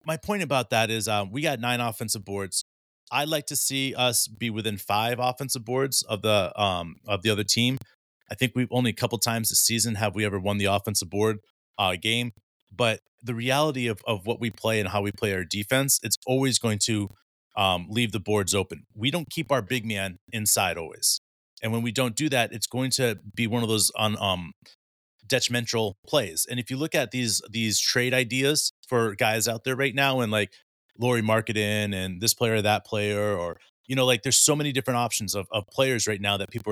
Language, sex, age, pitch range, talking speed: English, male, 30-49, 105-125 Hz, 220 wpm